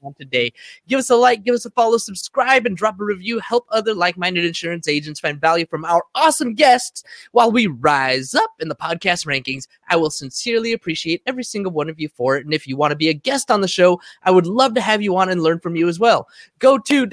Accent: American